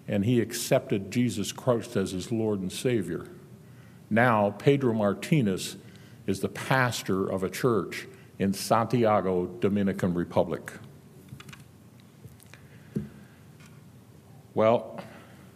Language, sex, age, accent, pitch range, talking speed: English, male, 60-79, American, 100-125 Hz, 95 wpm